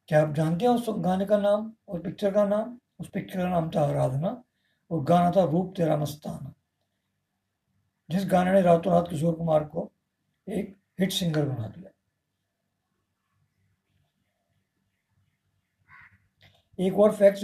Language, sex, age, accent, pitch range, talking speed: Hindi, male, 50-69, native, 145-195 Hz, 135 wpm